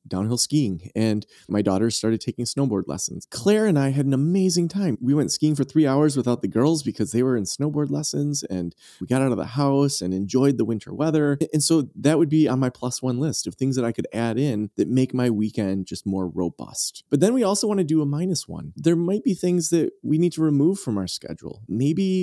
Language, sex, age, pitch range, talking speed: English, male, 20-39, 110-155 Hz, 245 wpm